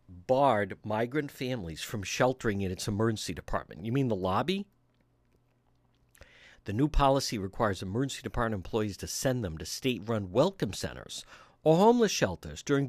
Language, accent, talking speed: English, American, 150 wpm